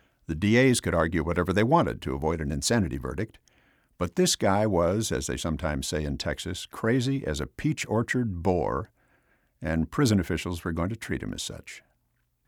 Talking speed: 185 wpm